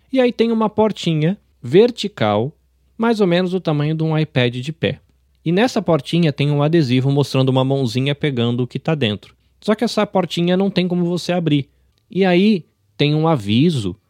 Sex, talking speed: male, 185 wpm